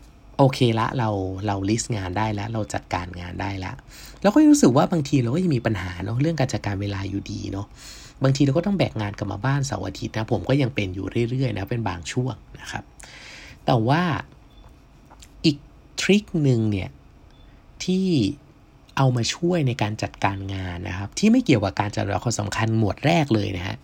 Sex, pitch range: male, 100-140 Hz